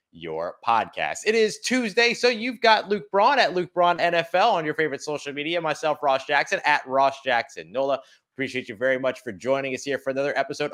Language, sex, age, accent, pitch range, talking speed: English, male, 30-49, American, 150-215 Hz, 205 wpm